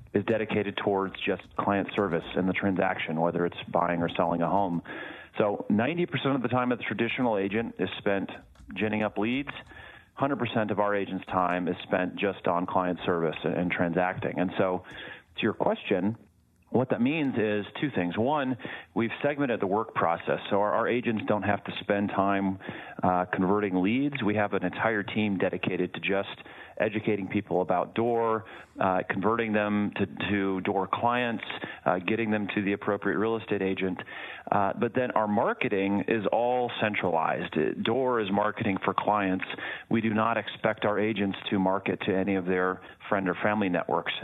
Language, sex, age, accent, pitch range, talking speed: English, male, 40-59, American, 95-110 Hz, 175 wpm